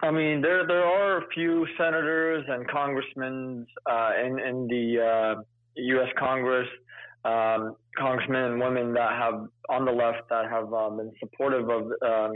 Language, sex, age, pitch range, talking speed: English, male, 20-39, 115-130 Hz, 165 wpm